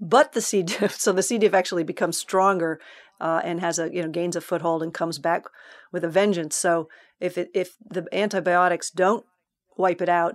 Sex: female